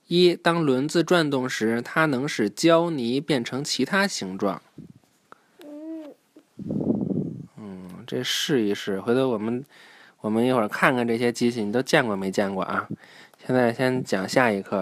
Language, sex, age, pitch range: Chinese, male, 20-39, 115-160 Hz